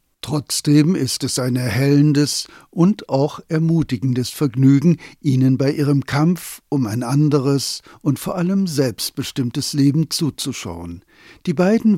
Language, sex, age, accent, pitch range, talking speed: German, male, 60-79, German, 130-160 Hz, 120 wpm